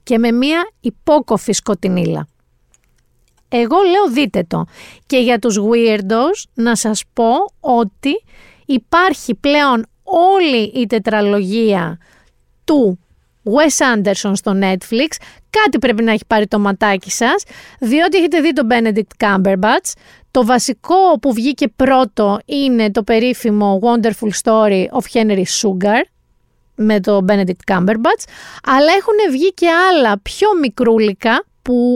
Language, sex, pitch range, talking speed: Greek, female, 210-305 Hz, 125 wpm